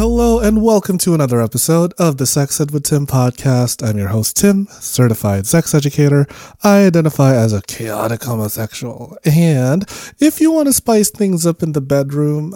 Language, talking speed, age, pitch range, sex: English, 175 wpm, 30-49, 115-175 Hz, male